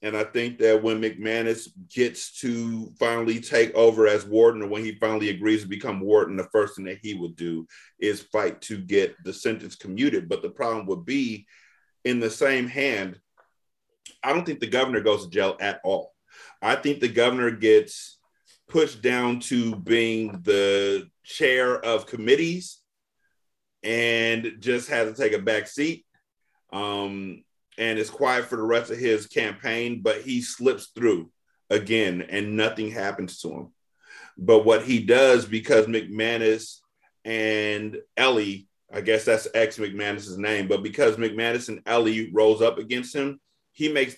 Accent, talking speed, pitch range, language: American, 165 wpm, 105-120 Hz, English